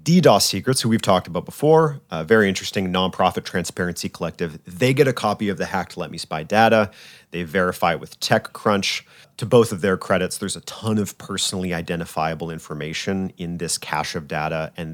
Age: 30-49